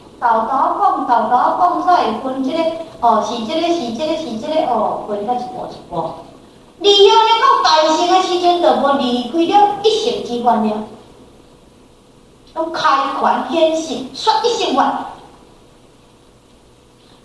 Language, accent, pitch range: Chinese, American, 245-370 Hz